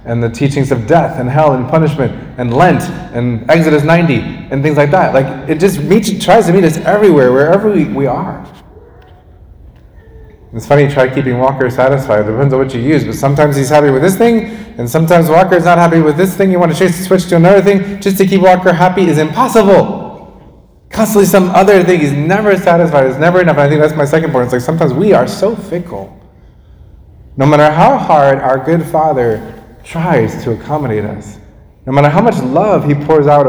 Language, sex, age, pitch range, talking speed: English, male, 20-39, 125-180 Hz, 210 wpm